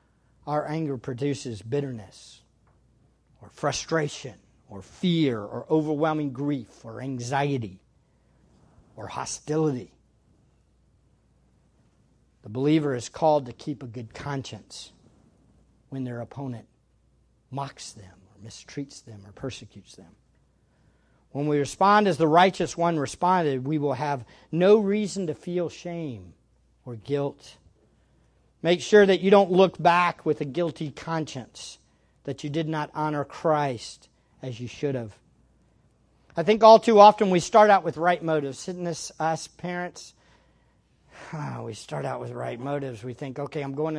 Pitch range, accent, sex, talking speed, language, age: 120-160 Hz, American, male, 140 wpm, English, 50-69